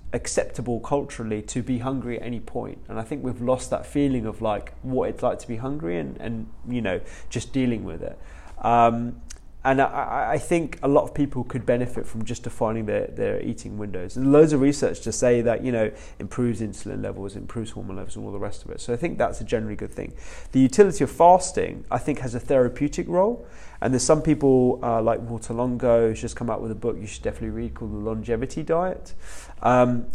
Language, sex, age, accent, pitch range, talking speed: English, male, 20-39, British, 110-135 Hz, 225 wpm